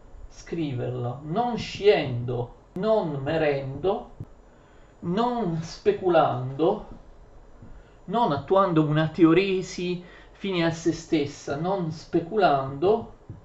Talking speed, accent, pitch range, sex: 70 wpm, native, 145-180 Hz, male